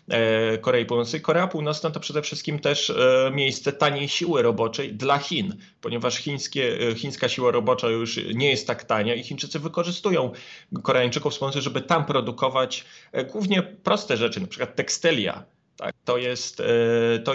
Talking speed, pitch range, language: 150 wpm, 115-145 Hz, Polish